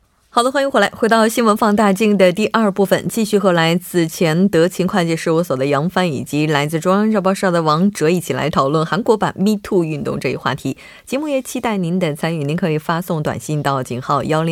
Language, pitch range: Korean, 150-210 Hz